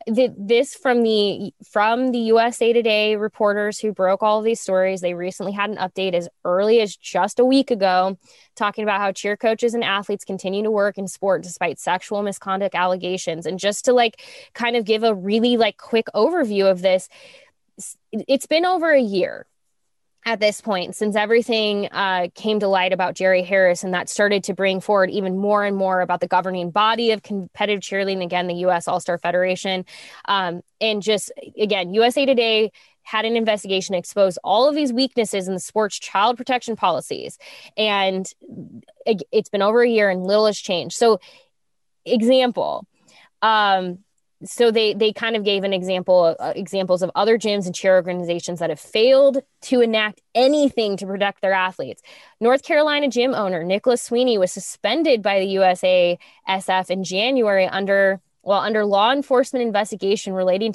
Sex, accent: female, American